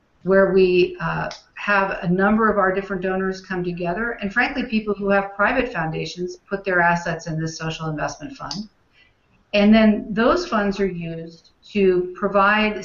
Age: 50-69